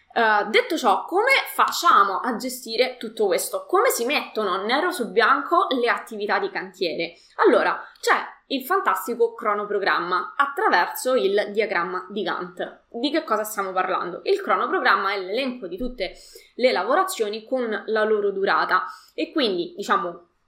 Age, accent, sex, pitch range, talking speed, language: 20-39, native, female, 195-320 Hz, 145 wpm, Italian